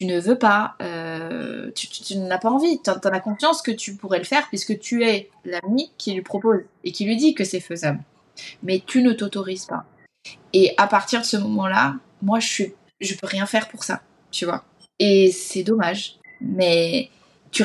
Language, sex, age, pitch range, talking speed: French, female, 20-39, 185-235 Hz, 205 wpm